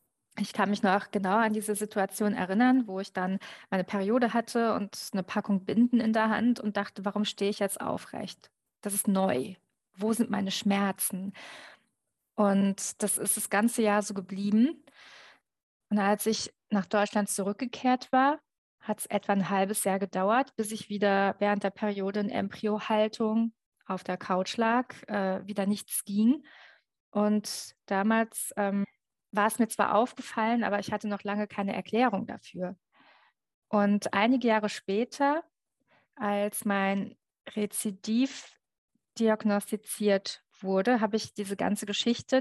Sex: female